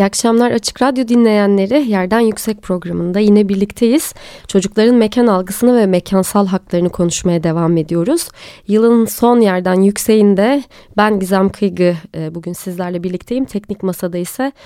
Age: 30-49